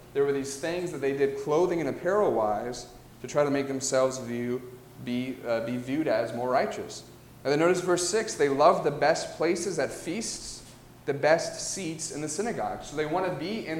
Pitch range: 125-165 Hz